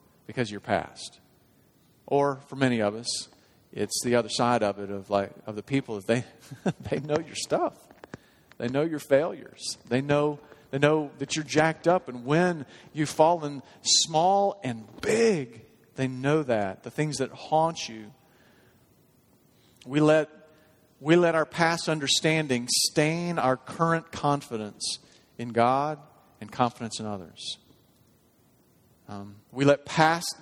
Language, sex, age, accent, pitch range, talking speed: English, male, 40-59, American, 120-160 Hz, 145 wpm